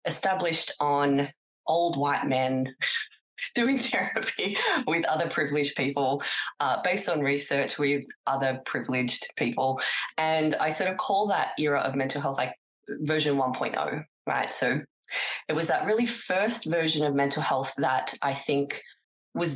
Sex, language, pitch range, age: female, English, 135-160 Hz, 20-39